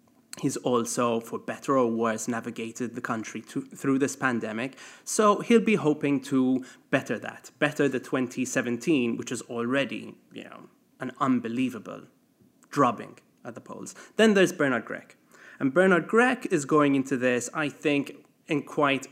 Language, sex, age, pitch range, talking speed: English, male, 20-39, 125-170 Hz, 155 wpm